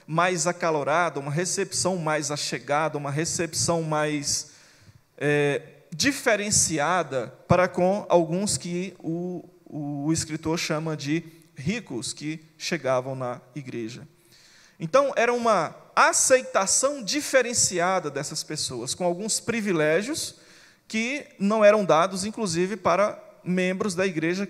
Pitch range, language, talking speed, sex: 150-195 Hz, Portuguese, 105 wpm, male